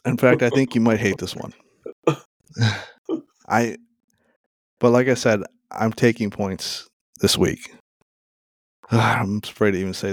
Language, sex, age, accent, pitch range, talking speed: English, male, 30-49, American, 105-120 Hz, 140 wpm